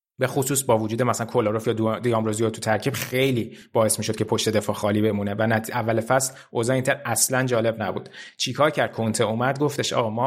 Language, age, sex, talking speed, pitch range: Persian, 20-39, male, 200 wpm, 110-125 Hz